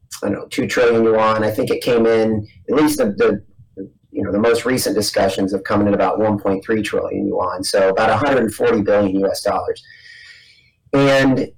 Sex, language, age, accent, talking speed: male, English, 30-49, American, 180 wpm